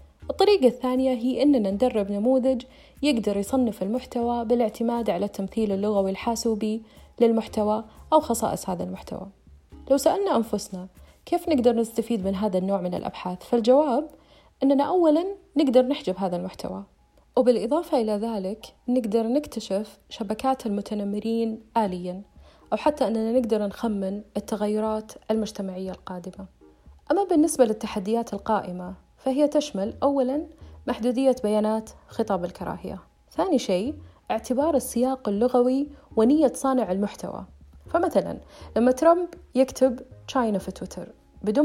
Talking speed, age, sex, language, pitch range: 115 wpm, 30-49, female, Arabic, 200-265 Hz